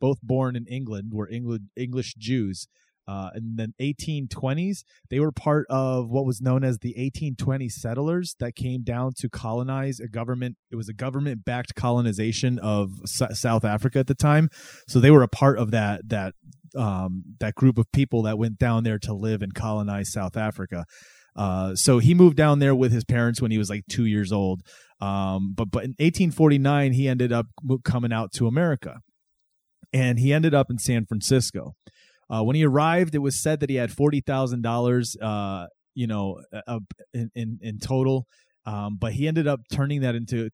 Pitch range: 110-135 Hz